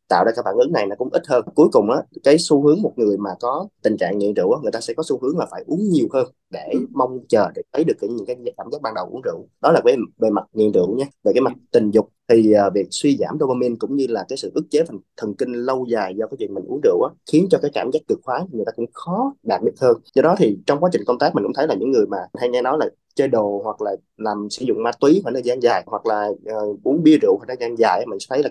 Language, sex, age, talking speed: Vietnamese, male, 20-39, 300 wpm